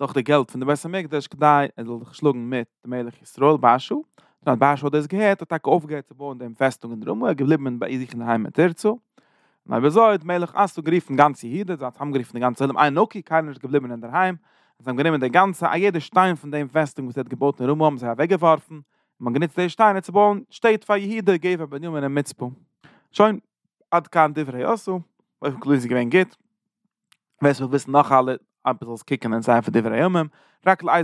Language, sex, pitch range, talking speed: English, male, 125-175 Hz, 165 wpm